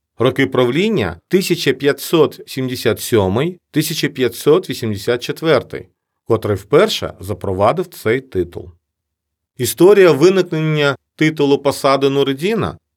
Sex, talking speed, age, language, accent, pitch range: male, 65 wpm, 40-59, Ukrainian, native, 100-155 Hz